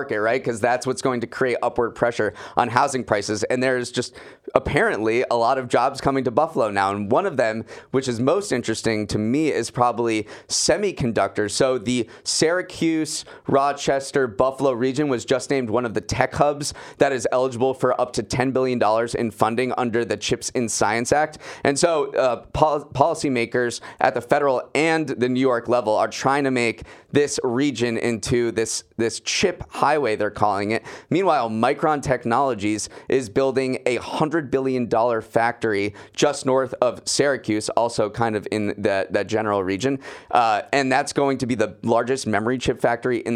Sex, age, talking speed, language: male, 30-49, 180 wpm, English